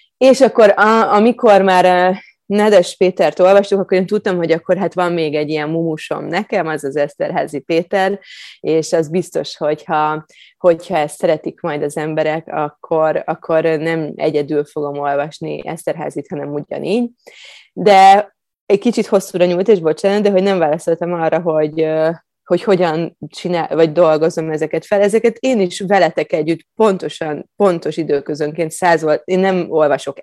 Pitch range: 155-190 Hz